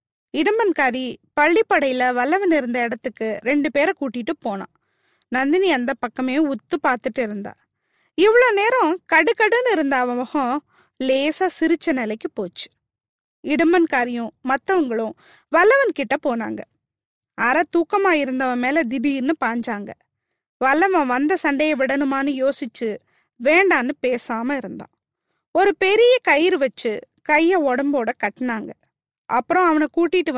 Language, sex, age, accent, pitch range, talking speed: Tamil, female, 20-39, native, 260-355 Hz, 105 wpm